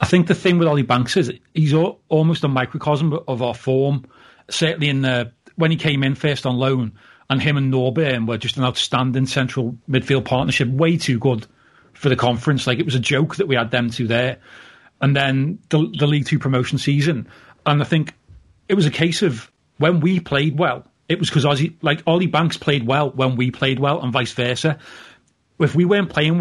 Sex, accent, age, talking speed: male, British, 30-49, 210 wpm